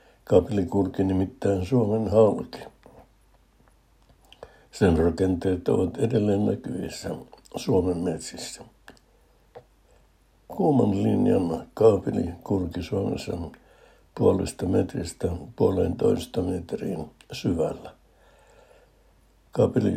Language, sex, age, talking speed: Finnish, male, 60-79, 65 wpm